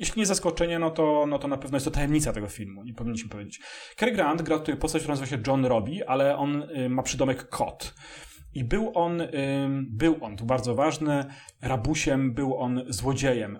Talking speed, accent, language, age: 200 wpm, native, Polish, 30-49